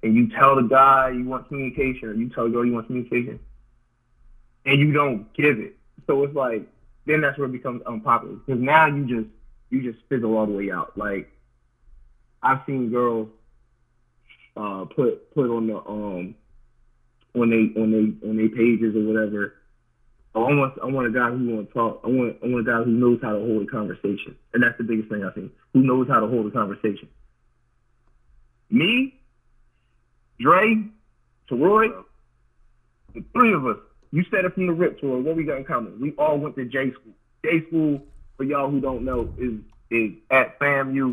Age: 20-39